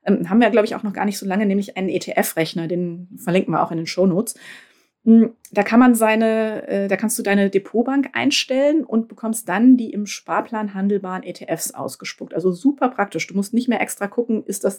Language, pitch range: German, 185-230 Hz